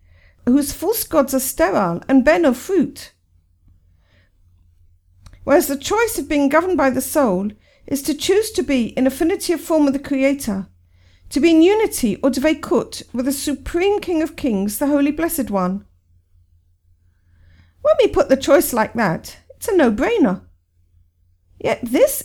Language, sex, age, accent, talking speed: English, female, 50-69, British, 155 wpm